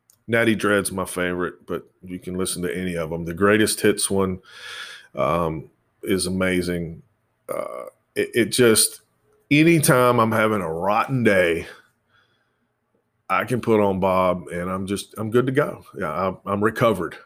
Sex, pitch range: male, 100-120 Hz